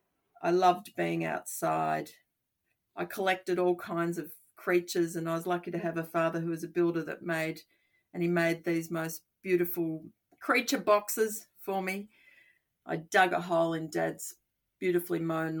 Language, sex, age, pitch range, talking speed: English, female, 40-59, 165-205 Hz, 160 wpm